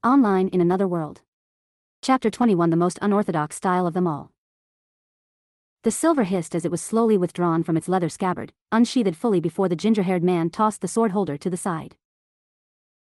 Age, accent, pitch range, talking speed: 40-59, American, 170-210 Hz, 175 wpm